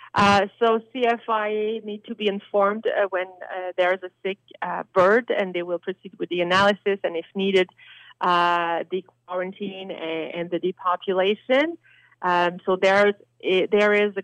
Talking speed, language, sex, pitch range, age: 175 wpm, English, female, 180-200 Hz, 30-49